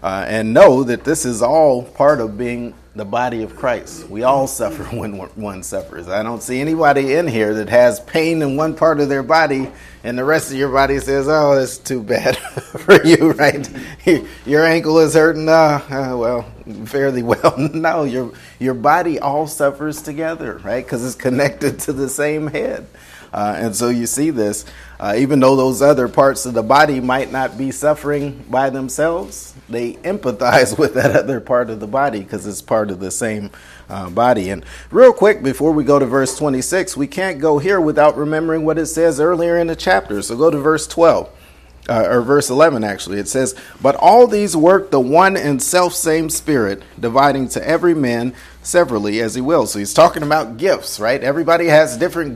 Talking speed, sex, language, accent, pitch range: 195 wpm, male, English, American, 120-155 Hz